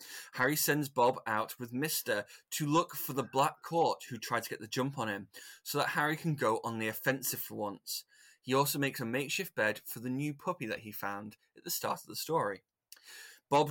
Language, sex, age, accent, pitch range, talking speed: English, male, 20-39, British, 110-140 Hz, 220 wpm